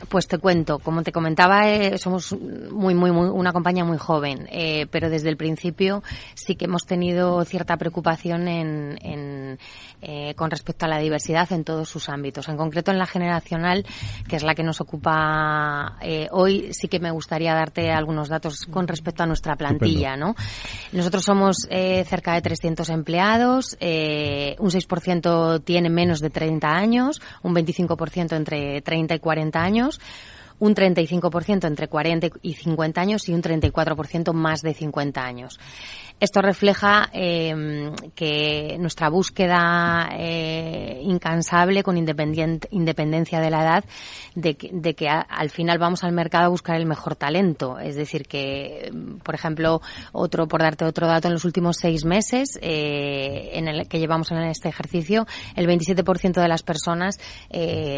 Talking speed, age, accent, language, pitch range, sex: 160 wpm, 20-39, Spanish, Spanish, 155-180 Hz, female